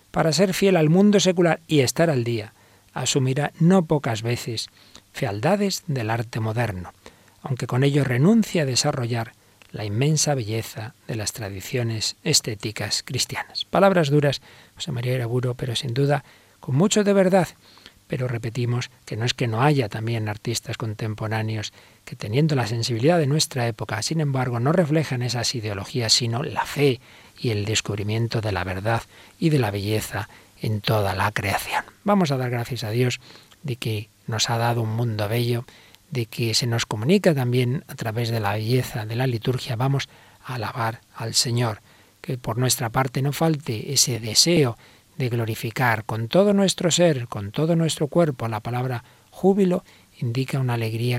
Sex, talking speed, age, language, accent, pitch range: male, 165 wpm, 40-59, Spanish, Spanish, 110-145 Hz